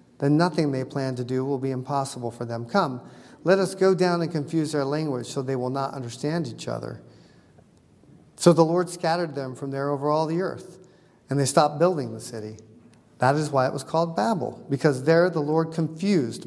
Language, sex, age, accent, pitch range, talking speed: English, male, 40-59, American, 130-170 Hz, 205 wpm